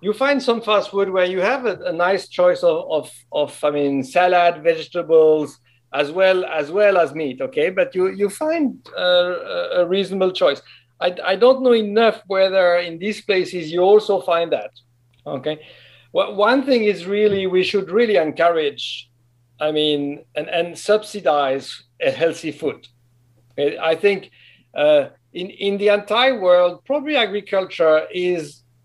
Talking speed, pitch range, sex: 160 wpm, 150-200 Hz, male